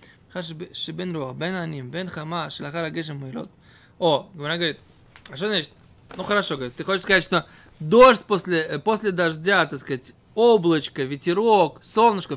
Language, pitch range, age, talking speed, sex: Russian, 145-215 Hz, 20-39, 120 wpm, male